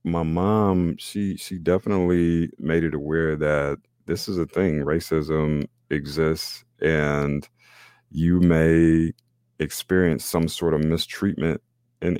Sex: male